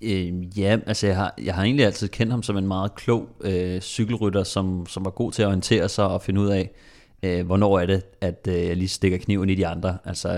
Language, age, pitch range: Danish, 30-49, 90-100 Hz